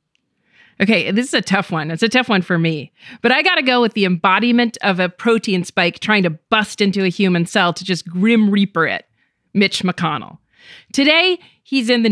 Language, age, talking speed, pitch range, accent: English, 40-59, 210 wpm, 180-240 Hz, American